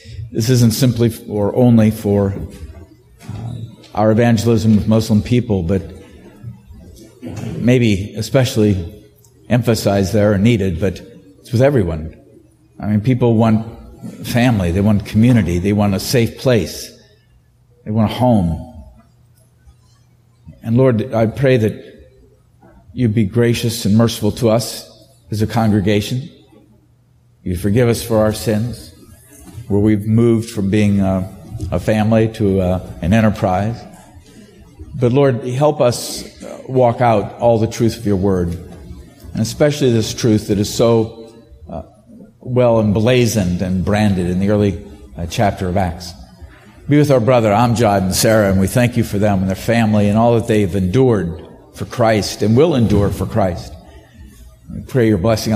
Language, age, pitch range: English, 50-69, 100-115 Hz